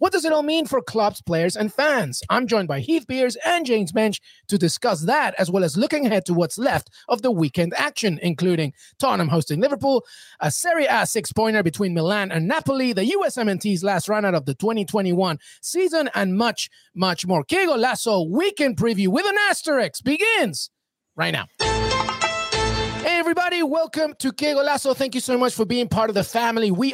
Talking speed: 185 wpm